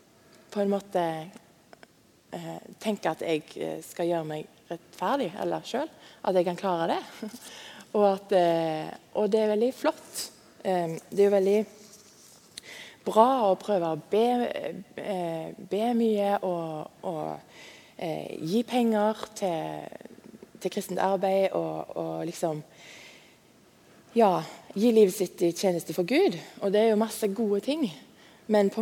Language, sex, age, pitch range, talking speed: English, female, 20-39, 170-220 Hz, 135 wpm